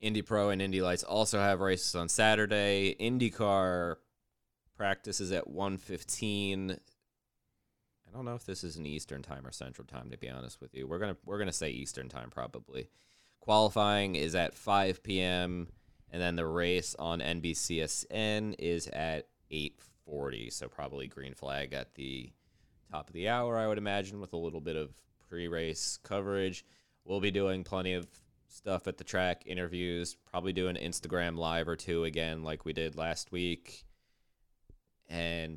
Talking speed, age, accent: 165 wpm, 20-39, American